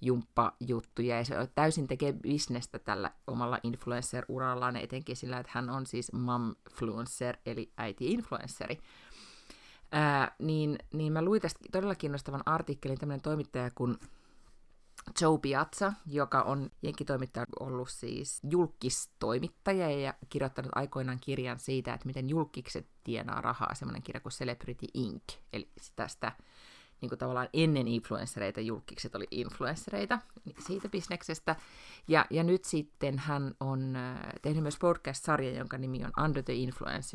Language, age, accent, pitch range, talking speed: Finnish, 30-49, native, 125-150 Hz, 130 wpm